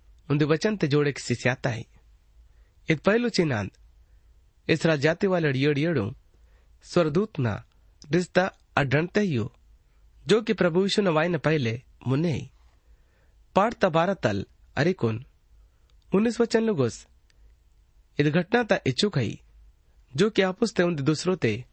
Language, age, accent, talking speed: Hindi, 30-49, native, 100 wpm